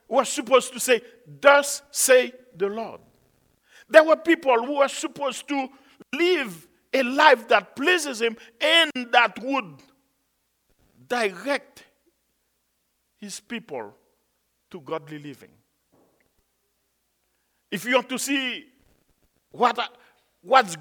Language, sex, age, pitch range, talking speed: English, male, 50-69, 220-300 Hz, 105 wpm